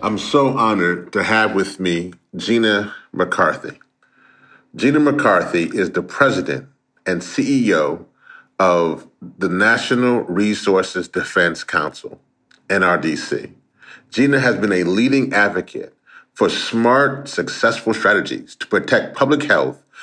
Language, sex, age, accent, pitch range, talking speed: English, male, 40-59, American, 110-155 Hz, 110 wpm